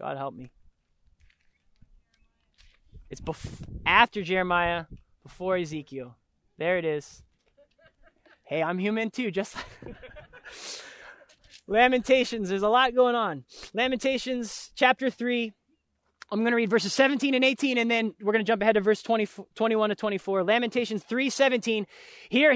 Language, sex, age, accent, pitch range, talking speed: English, male, 20-39, American, 200-270 Hz, 125 wpm